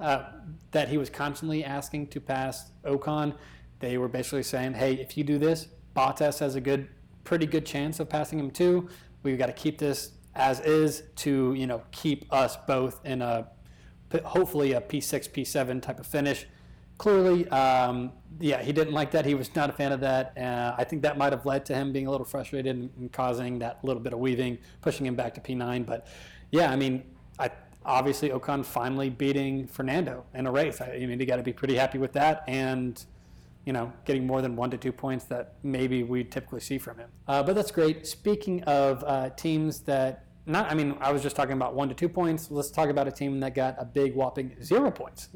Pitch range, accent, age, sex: 130-150 Hz, American, 30-49, male